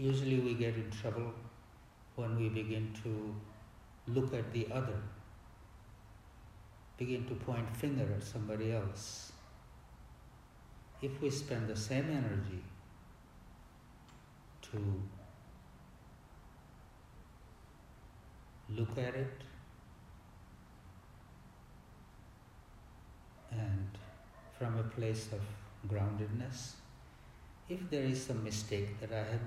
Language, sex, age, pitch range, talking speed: English, male, 60-79, 100-120 Hz, 90 wpm